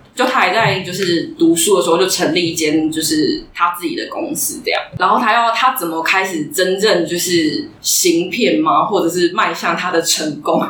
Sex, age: female, 20-39